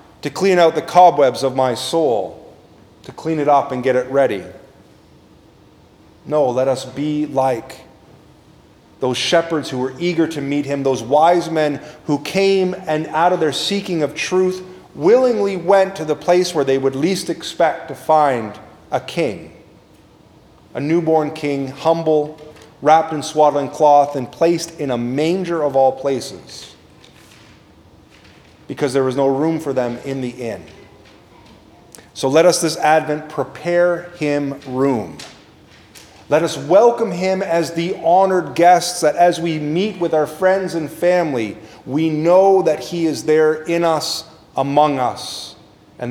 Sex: male